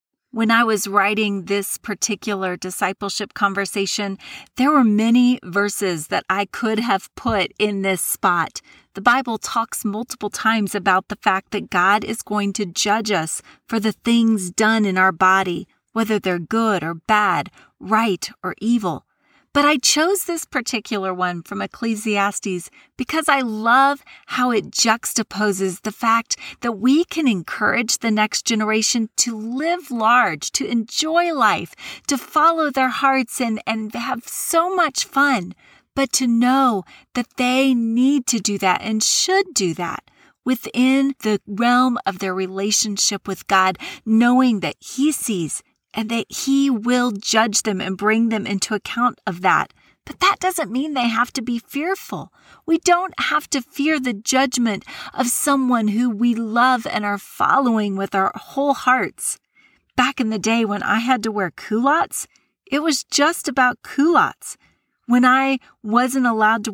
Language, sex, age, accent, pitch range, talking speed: English, female, 40-59, American, 205-265 Hz, 155 wpm